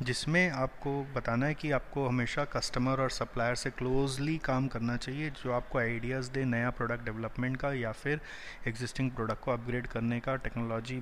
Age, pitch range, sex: 30-49, 120-140 Hz, male